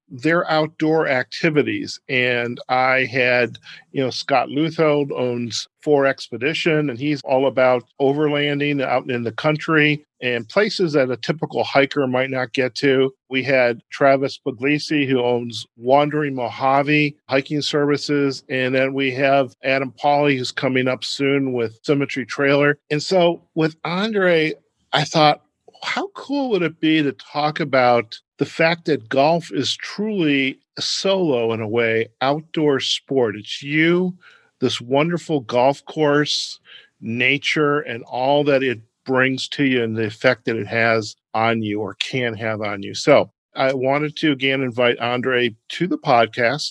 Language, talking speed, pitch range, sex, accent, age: English, 155 wpm, 125-150 Hz, male, American, 50-69